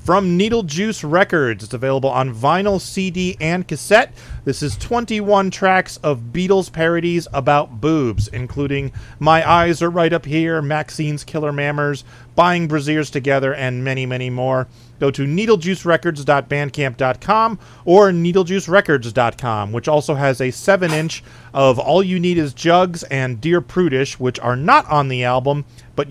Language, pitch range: English, 125-170 Hz